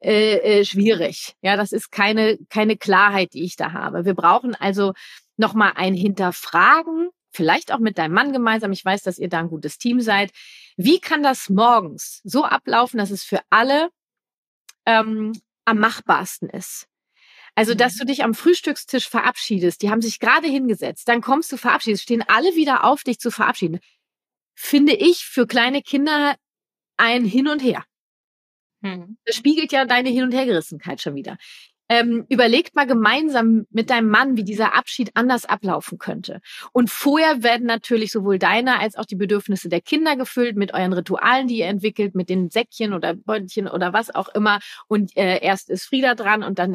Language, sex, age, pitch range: German, female, 30-49, 195-250 Hz